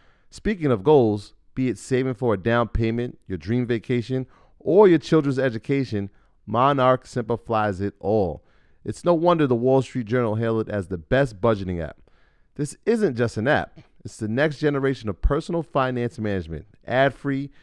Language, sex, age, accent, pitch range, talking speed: English, male, 30-49, American, 110-150 Hz, 165 wpm